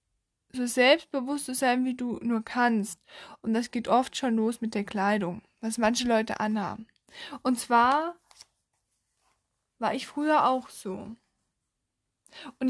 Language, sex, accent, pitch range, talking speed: German, female, German, 225-275 Hz, 135 wpm